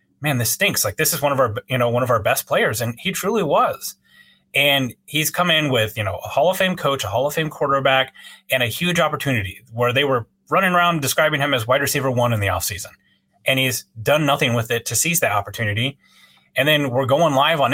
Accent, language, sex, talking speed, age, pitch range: American, English, male, 240 wpm, 30-49, 125-160 Hz